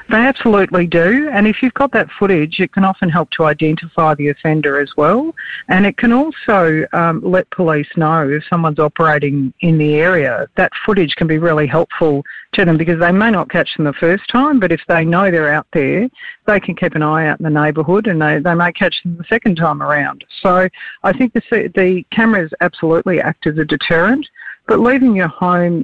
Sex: female